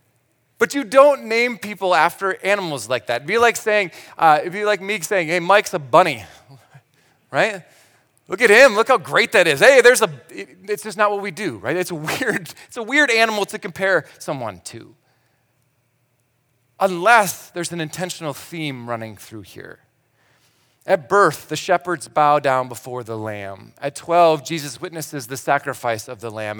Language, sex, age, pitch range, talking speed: English, male, 30-49, 125-170 Hz, 175 wpm